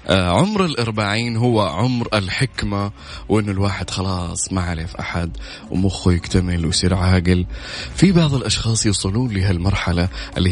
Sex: male